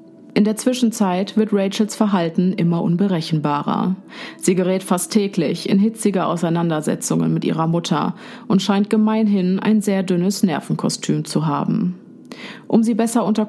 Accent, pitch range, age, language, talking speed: German, 170-210 Hz, 30-49, German, 140 wpm